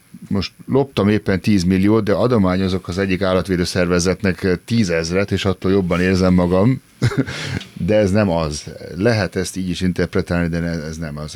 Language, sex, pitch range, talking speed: Hungarian, male, 80-100 Hz, 165 wpm